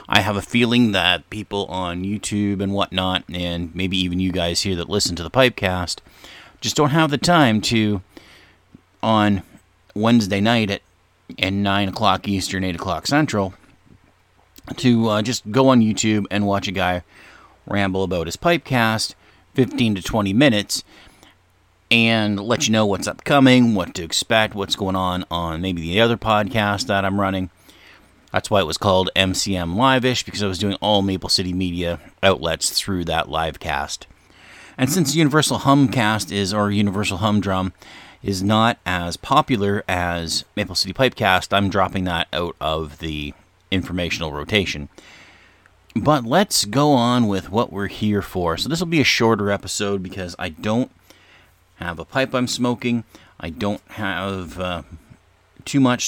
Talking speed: 160 wpm